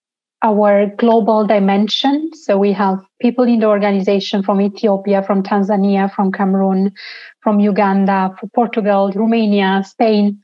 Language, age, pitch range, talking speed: English, 30-49, 205-235 Hz, 125 wpm